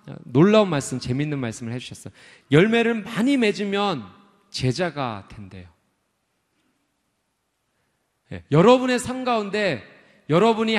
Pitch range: 120-195 Hz